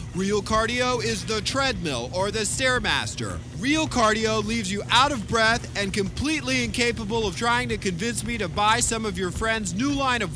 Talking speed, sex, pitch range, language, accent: 185 wpm, male, 150-220 Hz, English, American